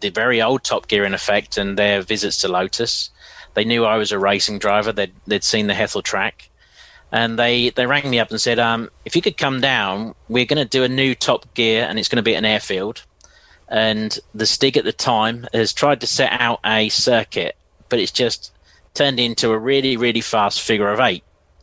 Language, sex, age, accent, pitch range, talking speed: English, male, 30-49, British, 110-125 Hz, 215 wpm